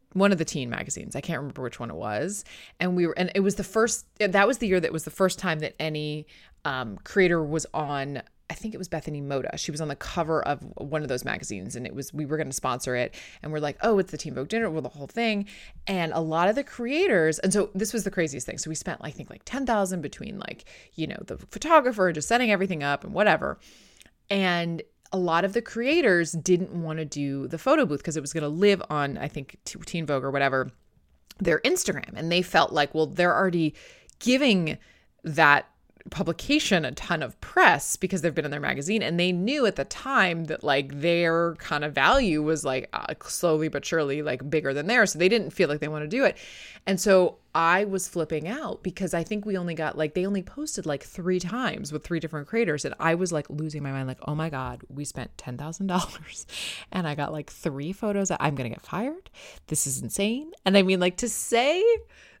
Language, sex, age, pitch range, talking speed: English, female, 20-39, 150-195 Hz, 235 wpm